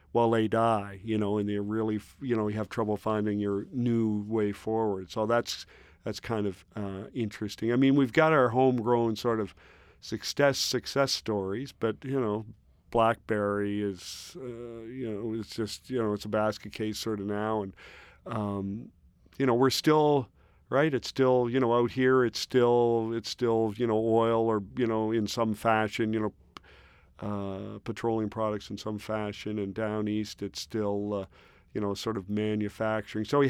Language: English